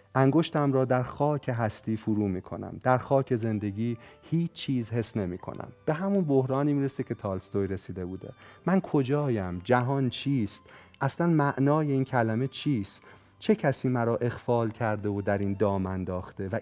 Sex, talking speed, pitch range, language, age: male, 160 wpm, 105-135 Hz, Persian, 40-59